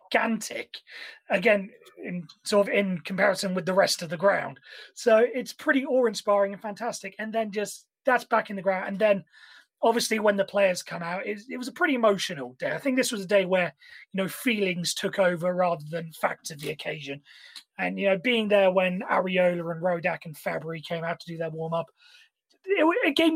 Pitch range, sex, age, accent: 175-225 Hz, male, 30-49, British